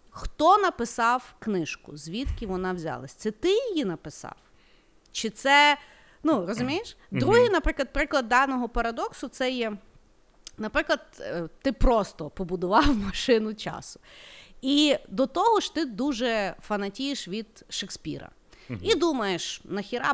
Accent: native